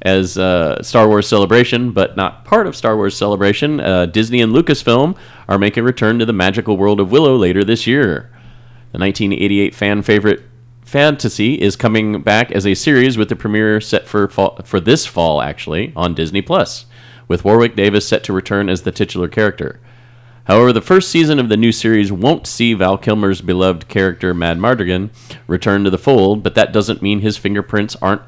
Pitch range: 95-120 Hz